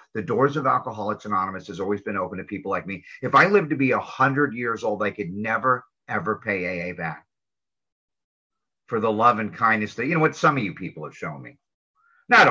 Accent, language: American, English